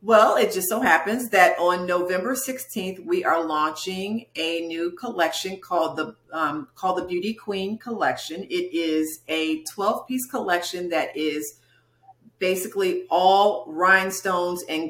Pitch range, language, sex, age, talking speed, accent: 160-210 Hz, English, female, 40-59, 135 wpm, American